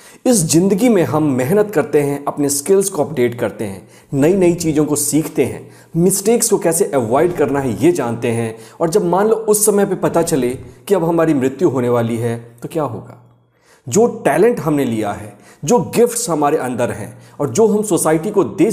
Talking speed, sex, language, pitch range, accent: 200 wpm, male, Hindi, 125-185 Hz, native